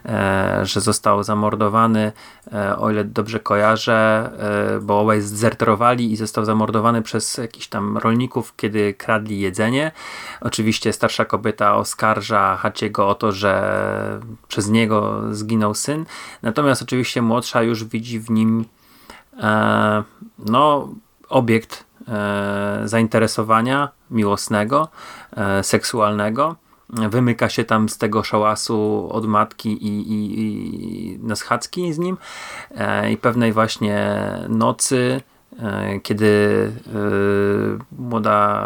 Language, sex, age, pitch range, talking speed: Polish, male, 30-49, 105-115 Hz, 115 wpm